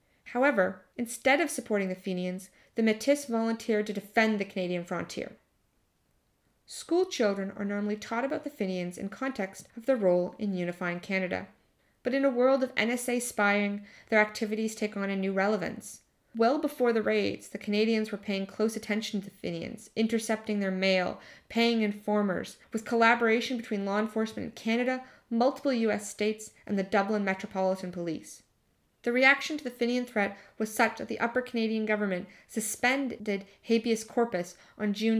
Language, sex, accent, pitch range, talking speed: English, female, American, 200-235 Hz, 160 wpm